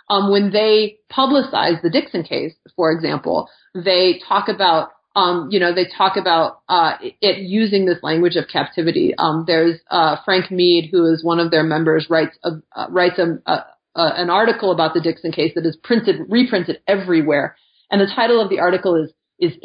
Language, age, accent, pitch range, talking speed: English, 30-49, American, 160-185 Hz, 190 wpm